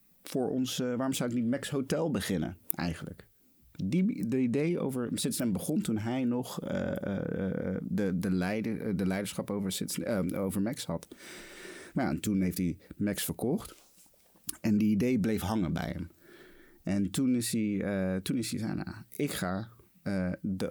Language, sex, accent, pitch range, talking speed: Dutch, male, Dutch, 95-125 Hz, 155 wpm